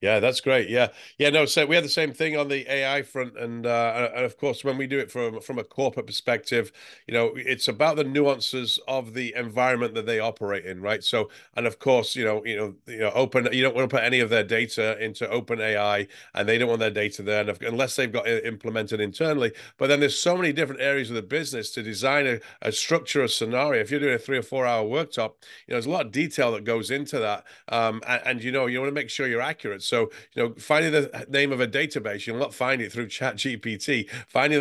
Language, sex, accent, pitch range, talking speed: English, male, British, 115-140 Hz, 255 wpm